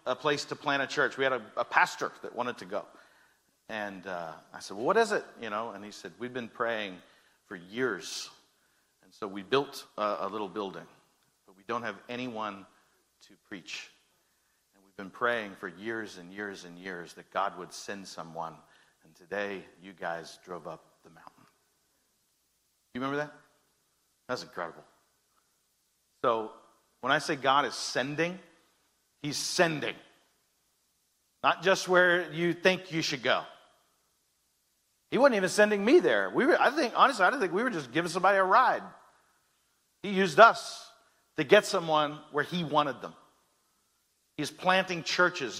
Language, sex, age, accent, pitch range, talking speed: English, male, 50-69, American, 105-165 Hz, 165 wpm